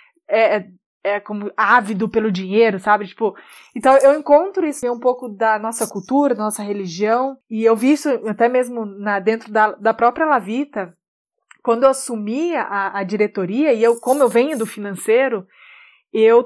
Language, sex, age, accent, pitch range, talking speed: Portuguese, female, 20-39, Brazilian, 220-285 Hz, 175 wpm